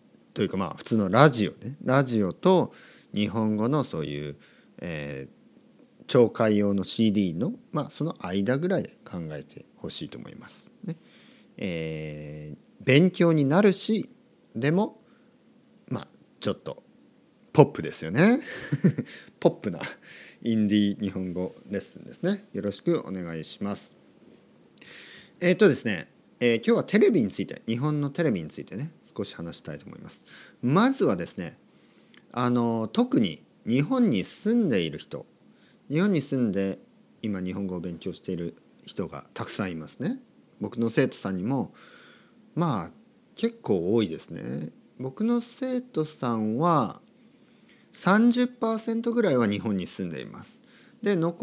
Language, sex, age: Japanese, male, 40-59